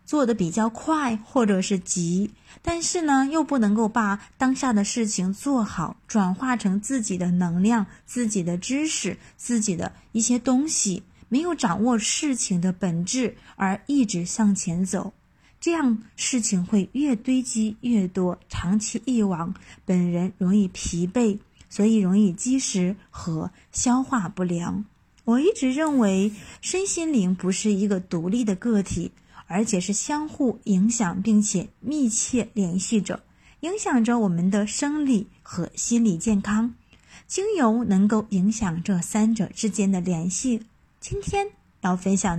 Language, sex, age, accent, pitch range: Chinese, female, 20-39, native, 195-250 Hz